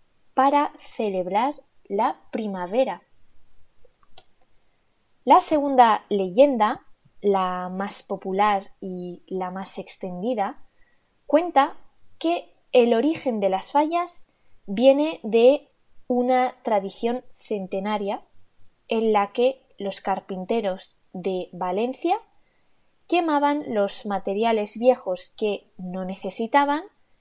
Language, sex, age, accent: Italian, female, 20-39, Spanish